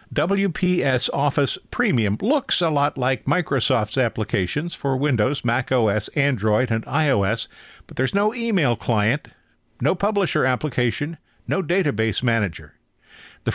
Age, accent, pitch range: 50-69, American, 110-150 Hz